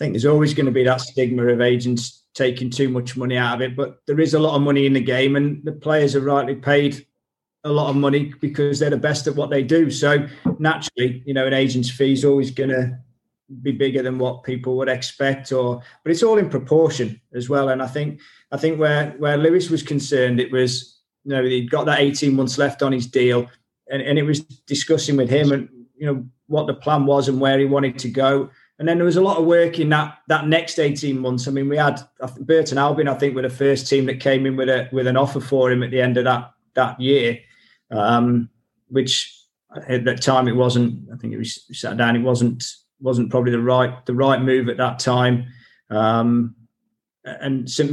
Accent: British